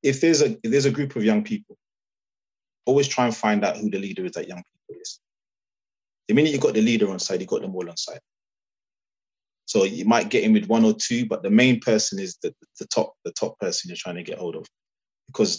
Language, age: English, 20-39